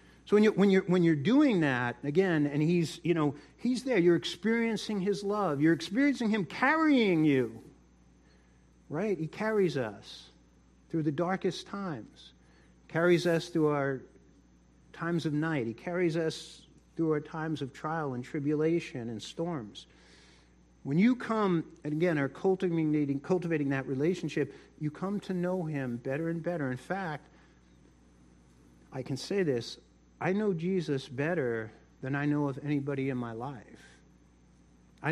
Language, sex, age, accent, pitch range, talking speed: English, male, 50-69, American, 120-185 Hz, 150 wpm